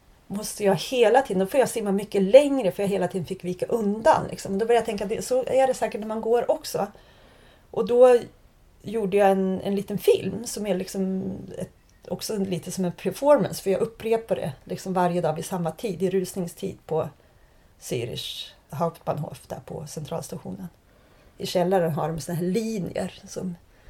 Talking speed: 180 wpm